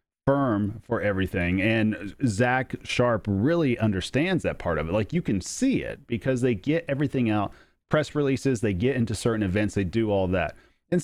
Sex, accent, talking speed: male, American, 185 wpm